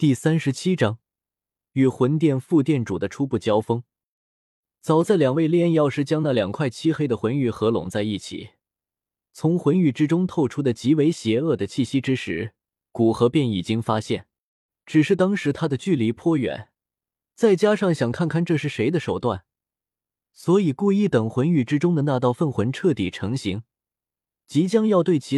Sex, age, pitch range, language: male, 20-39, 115-160 Hz, Chinese